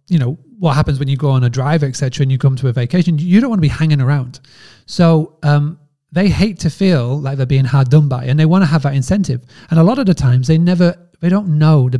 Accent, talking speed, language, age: British, 275 wpm, English, 30-49